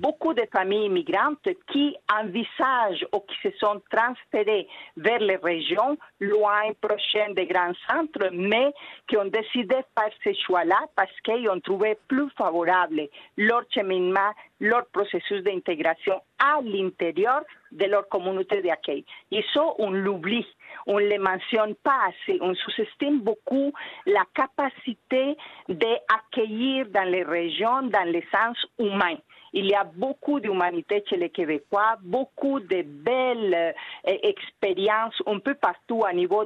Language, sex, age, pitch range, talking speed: French, female, 50-69, 190-255 Hz, 140 wpm